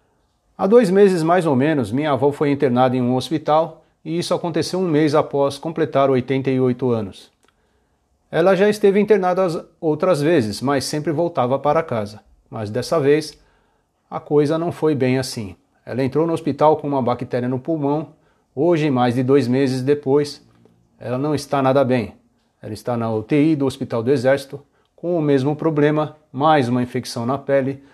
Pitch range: 125-160 Hz